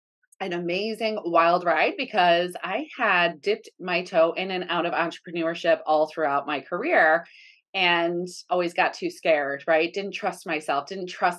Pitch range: 165-215 Hz